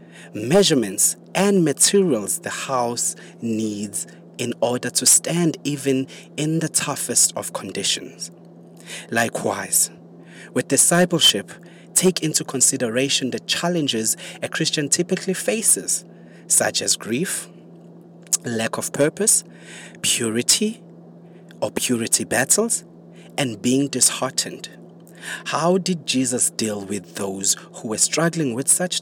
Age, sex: 30-49, male